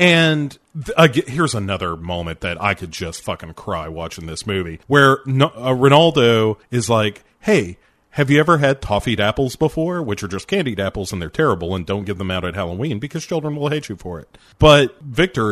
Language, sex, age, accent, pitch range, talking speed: English, male, 40-59, American, 100-150 Hz, 195 wpm